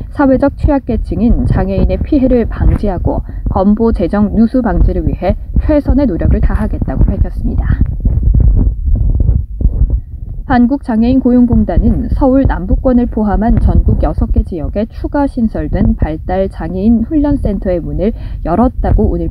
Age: 20-39